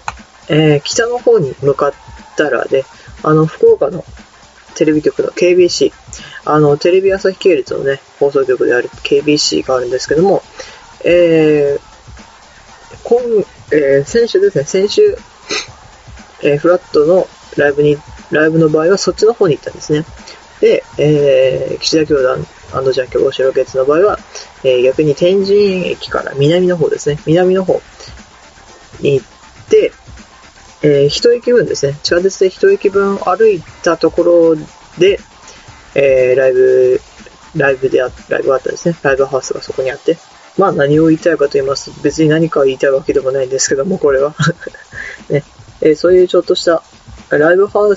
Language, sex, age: Japanese, female, 20-39